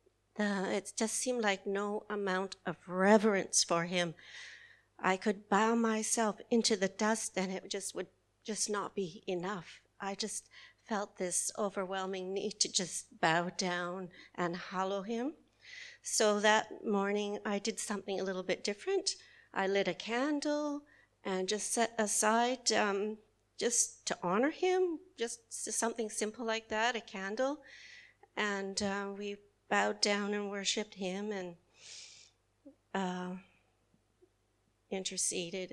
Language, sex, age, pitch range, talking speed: English, female, 40-59, 185-225 Hz, 135 wpm